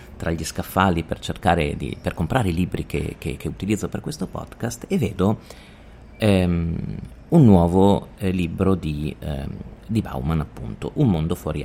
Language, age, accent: Italian, 40-59, native